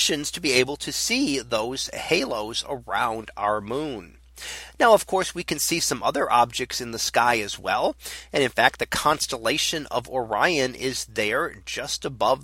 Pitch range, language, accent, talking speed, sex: 115-145 Hz, English, American, 170 wpm, male